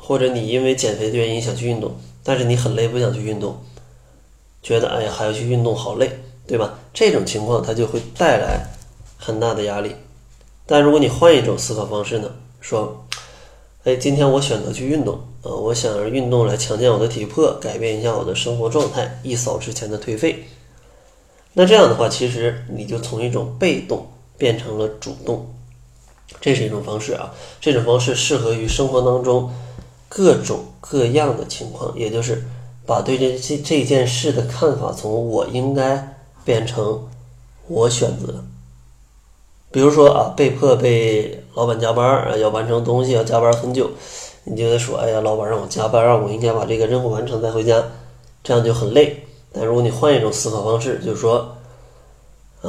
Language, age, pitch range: Chinese, 20-39, 110-125 Hz